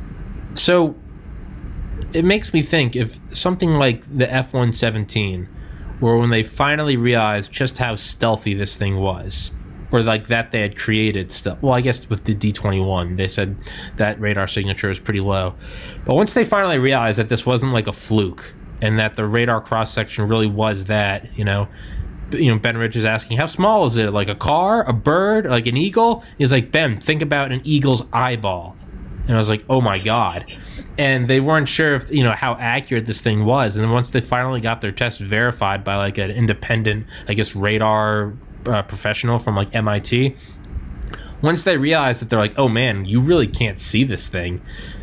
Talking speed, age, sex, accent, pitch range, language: 190 wpm, 20-39, male, American, 100-125 Hz, English